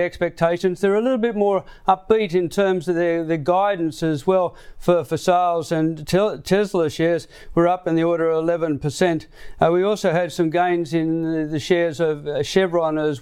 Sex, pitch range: male, 160-180 Hz